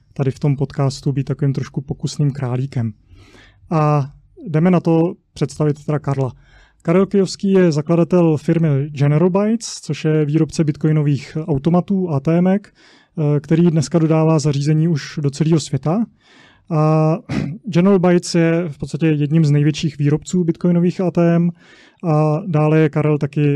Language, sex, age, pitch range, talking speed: Czech, male, 20-39, 140-165 Hz, 140 wpm